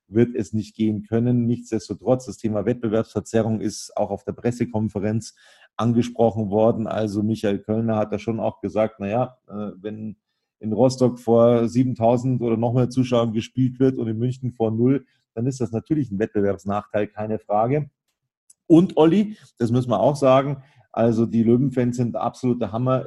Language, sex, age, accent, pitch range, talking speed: German, male, 40-59, German, 105-120 Hz, 160 wpm